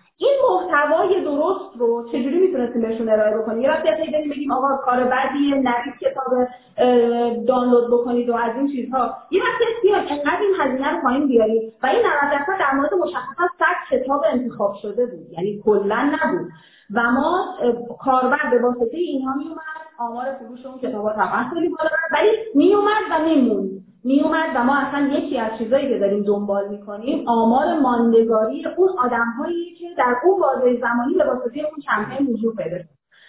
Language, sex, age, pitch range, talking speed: Persian, female, 30-49, 225-310 Hz, 165 wpm